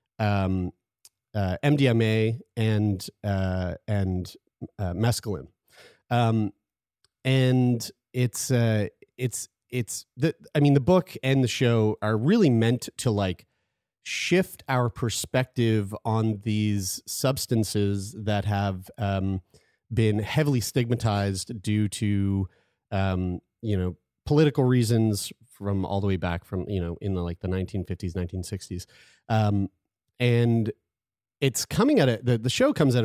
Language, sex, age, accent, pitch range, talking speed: English, male, 30-49, American, 100-125 Hz, 140 wpm